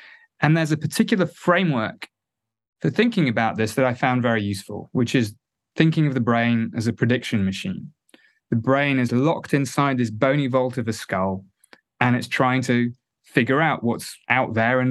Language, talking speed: English, 180 wpm